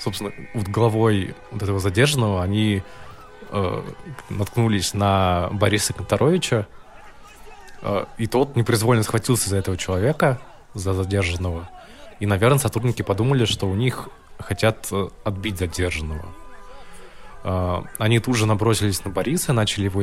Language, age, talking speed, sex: Russian, 20-39, 120 wpm, male